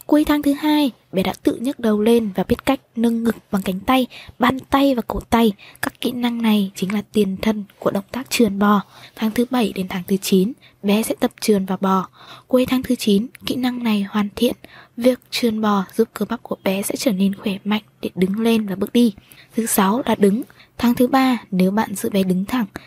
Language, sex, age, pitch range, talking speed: Vietnamese, female, 20-39, 200-245 Hz, 235 wpm